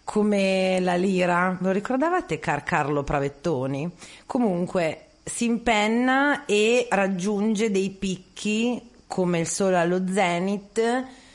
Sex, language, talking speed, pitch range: female, Italian, 100 wpm, 165-210 Hz